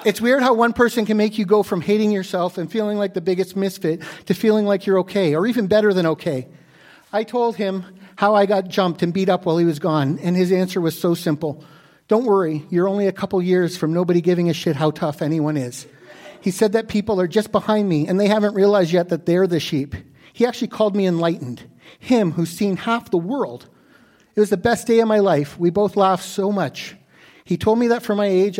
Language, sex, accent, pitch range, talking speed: English, male, American, 155-200 Hz, 235 wpm